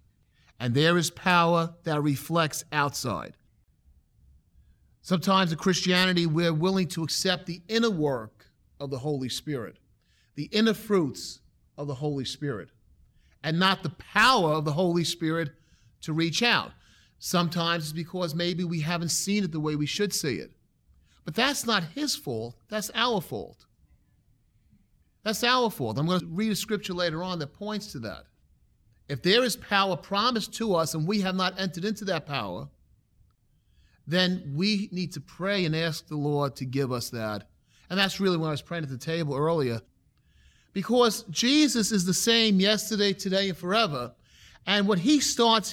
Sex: male